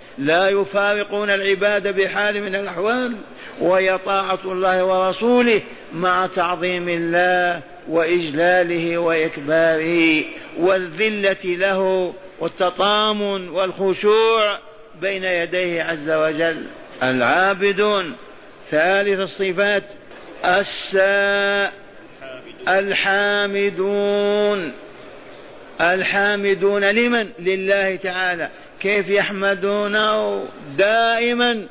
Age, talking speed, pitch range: 50-69, 65 wpm, 175-200 Hz